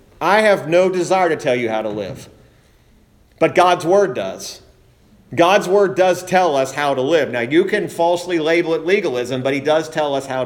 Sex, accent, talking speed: male, American, 200 wpm